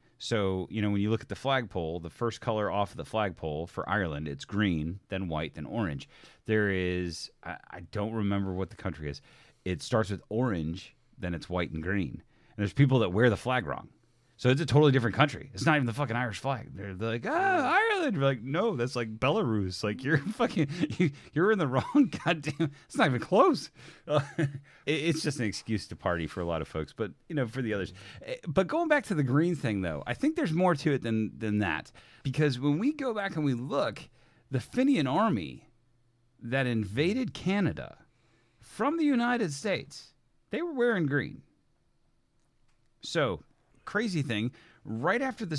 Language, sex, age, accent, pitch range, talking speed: English, male, 30-49, American, 105-155 Hz, 195 wpm